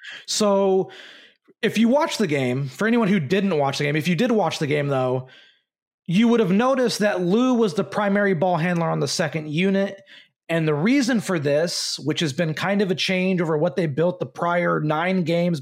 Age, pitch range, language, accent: 30-49, 160-195 Hz, English, American